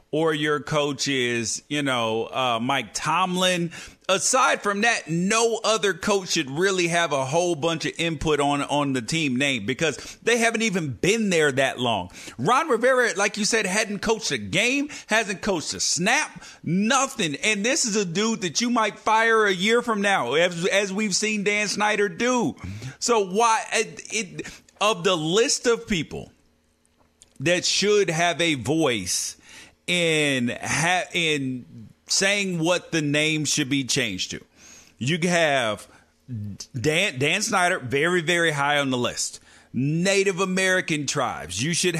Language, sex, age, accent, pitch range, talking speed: English, male, 40-59, American, 145-205 Hz, 160 wpm